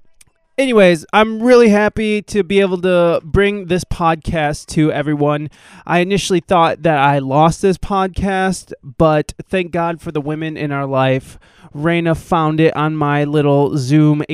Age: 20-39